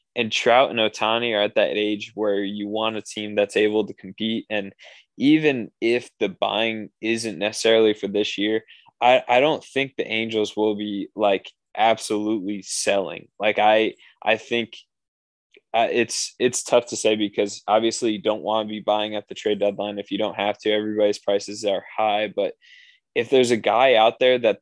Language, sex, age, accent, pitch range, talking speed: English, male, 20-39, American, 105-115 Hz, 190 wpm